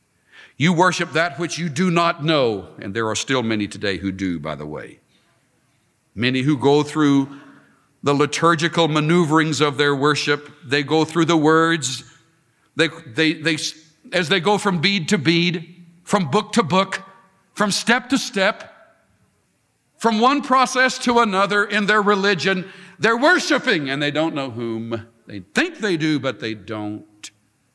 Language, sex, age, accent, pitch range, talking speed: English, male, 60-79, American, 120-190 Hz, 155 wpm